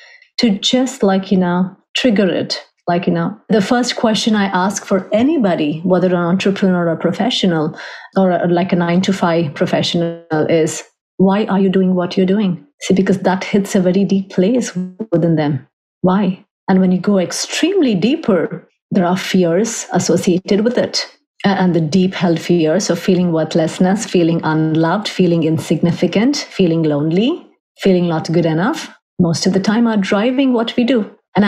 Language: English